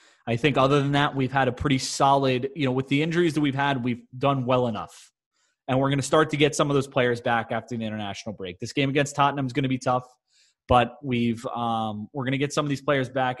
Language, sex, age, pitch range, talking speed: English, male, 20-39, 125-160 Hz, 275 wpm